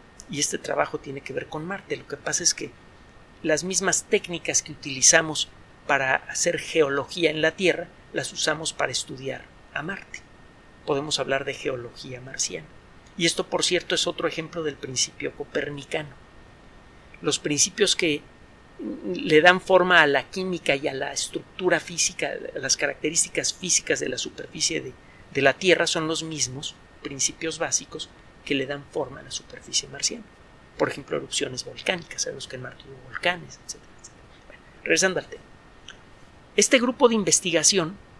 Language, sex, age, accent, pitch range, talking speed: Spanish, male, 50-69, Mexican, 145-190 Hz, 155 wpm